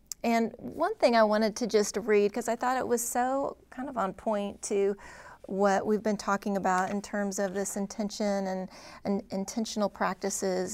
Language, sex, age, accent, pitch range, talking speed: English, female, 30-49, American, 190-220 Hz, 185 wpm